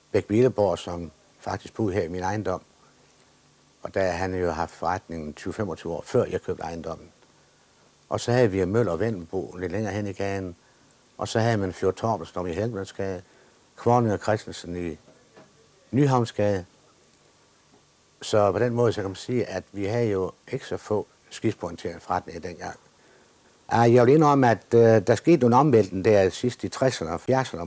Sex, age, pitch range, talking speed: male, 60-79, 90-115 Hz, 170 wpm